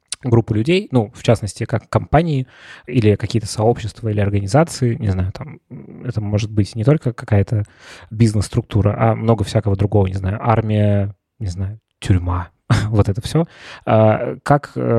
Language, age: Russian, 20-39